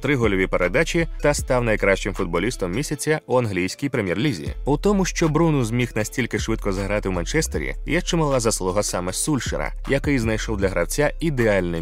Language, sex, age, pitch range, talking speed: Ukrainian, male, 20-39, 100-155 Hz, 150 wpm